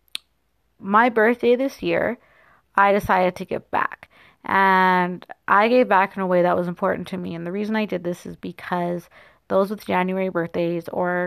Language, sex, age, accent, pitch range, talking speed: English, female, 30-49, American, 175-200 Hz, 180 wpm